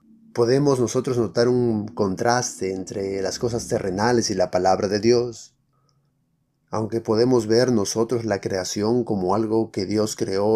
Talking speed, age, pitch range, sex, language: 140 wpm, 30-49, 115-150 Hz, male, Spanish